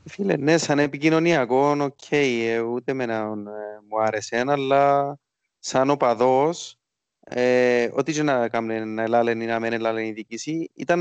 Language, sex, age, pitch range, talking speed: Greek, male, 30-49, 115-170 Hz, 160 wpm